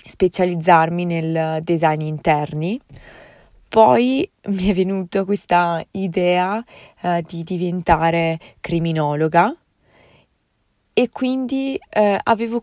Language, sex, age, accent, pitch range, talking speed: Italian, female, 20-39, native, 165-200 Hz, 85 wpm